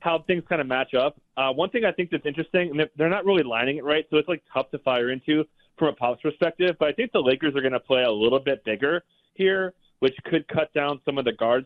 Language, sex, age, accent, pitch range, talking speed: English, male, 20-39, American, 120-150 Hz, 275 wpm